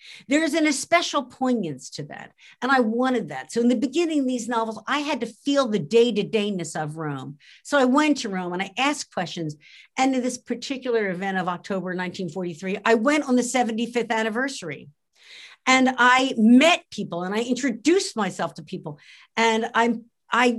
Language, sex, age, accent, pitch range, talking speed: English, female, 50-69, American, 205-275 Hz, 180 wpm